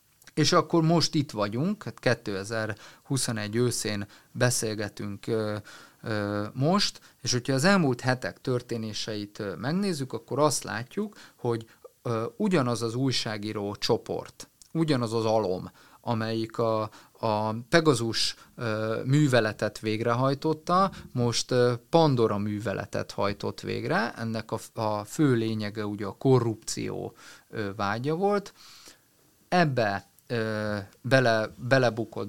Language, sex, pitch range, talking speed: Hungarian, male, 110-140 Hz, 95 wpm